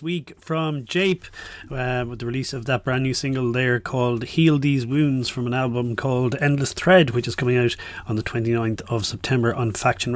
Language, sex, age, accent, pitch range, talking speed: English, male, 30-49, Irish, 120-145 Hz, 200 wpm